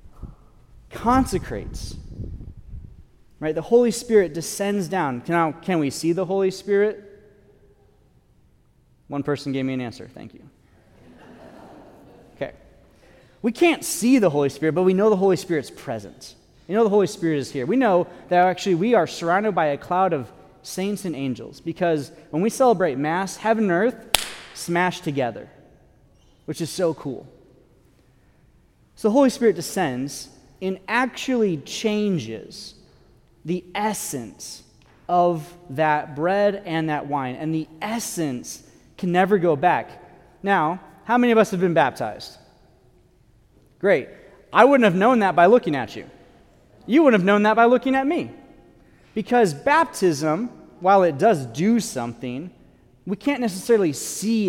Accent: American